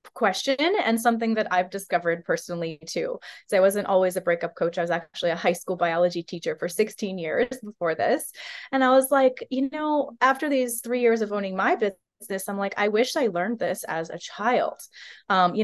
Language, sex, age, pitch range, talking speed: English, female, 20-39, 185-240 Hz, 205 wpm